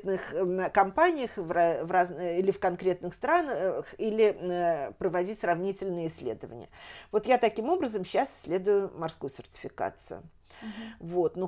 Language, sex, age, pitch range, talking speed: Russian, female, 50-69, 175-225 Hz, 95 wpm